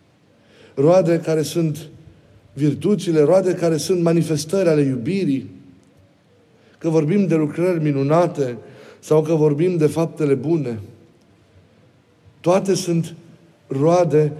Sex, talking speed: male, 100 wpm